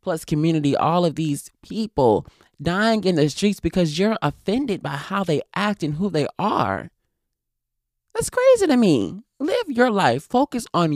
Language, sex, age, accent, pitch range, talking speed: English, male, 20-39, American, 135-185 Hz, 165 wpm